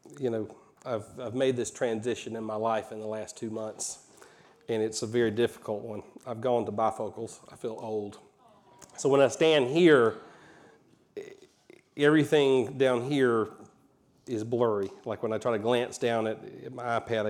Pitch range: 115-140 Hz